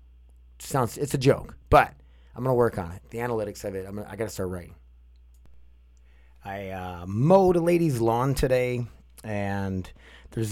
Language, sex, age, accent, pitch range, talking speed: English, male, 30-49, American, 85-120 Hz, 165 wpm